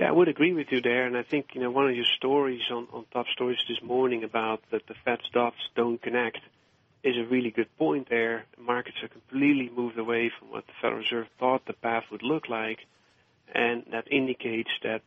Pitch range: 115-130 Hz